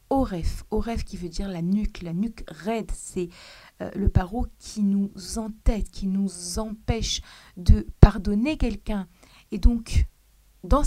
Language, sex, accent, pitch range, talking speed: French, female, French, 185-230 Hz, 145 wpm